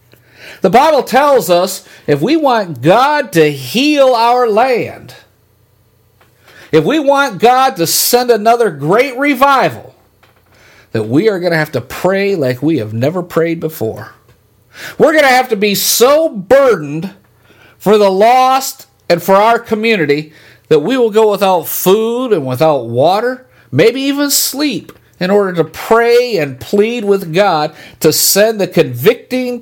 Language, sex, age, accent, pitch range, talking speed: English, male, 50-69, American, 130-215 Hz, 150 wpm